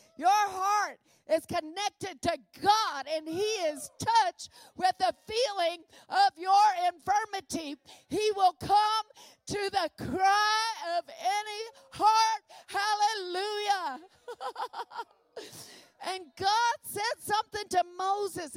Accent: American